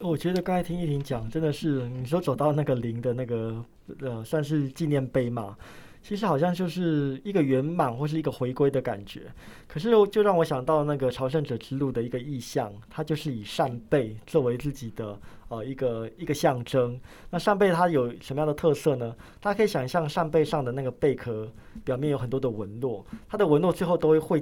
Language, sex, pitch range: Chinese, male, 120-160 Hz